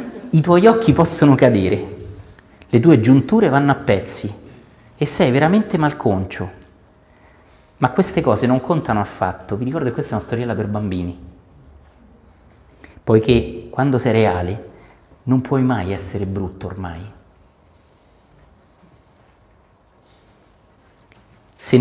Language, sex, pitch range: Italian, male, 90-125 Hz